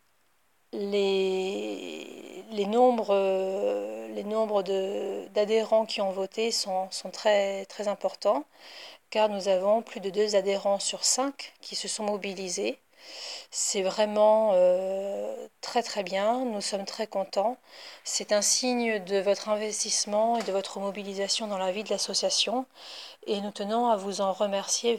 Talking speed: 145 wpm